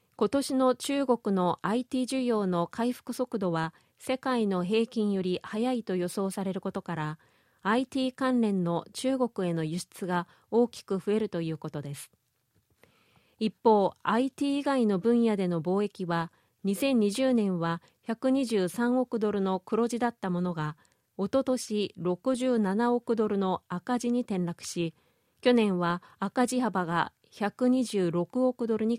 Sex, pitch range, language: female, 180-240 Hz, Japanese